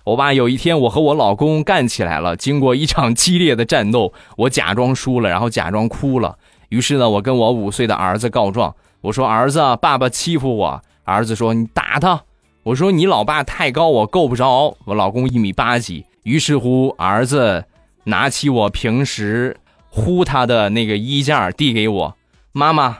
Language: Chinese